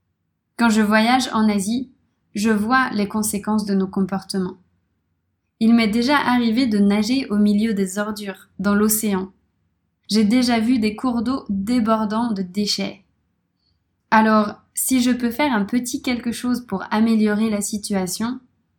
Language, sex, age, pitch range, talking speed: French, female, 20-39, 195-230 Hz, 145 wpm